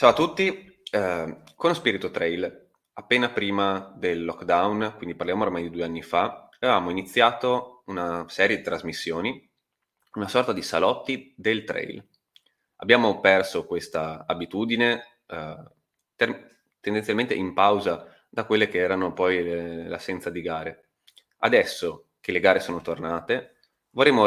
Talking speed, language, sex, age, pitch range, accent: 135 wpm, Italian, male, 20-39, 85-110 Hz, native